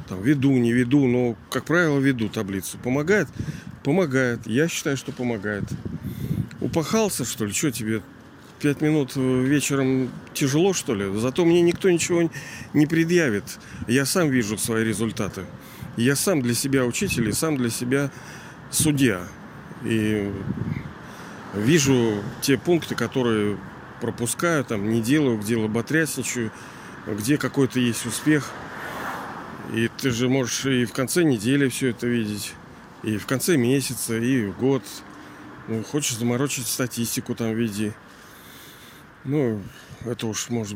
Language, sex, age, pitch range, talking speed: Russian, male, 40-59, 115-140 Hz, 130 wpm